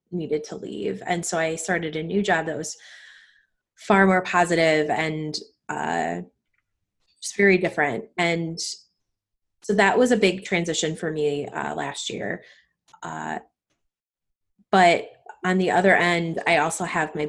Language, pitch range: English, 150-180 Hz